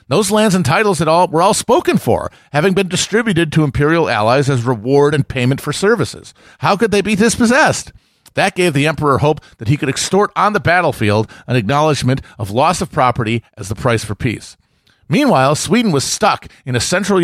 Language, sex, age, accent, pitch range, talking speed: English, male, 40-59, American, 125-170 Hz, 195 wpm